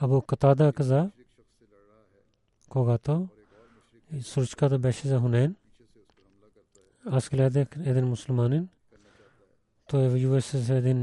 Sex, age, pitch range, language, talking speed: male, 40-59, 120-140 Hz, Bulgarian, 105 wpm